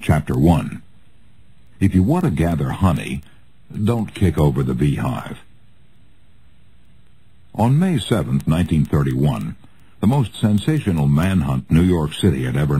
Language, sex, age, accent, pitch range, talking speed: English, male, 60-79, American, 75-105 Hz, 120 wpm